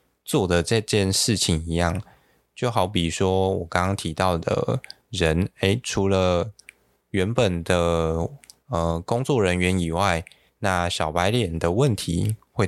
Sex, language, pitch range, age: male, Chinese, 85-105 Hz, 20-39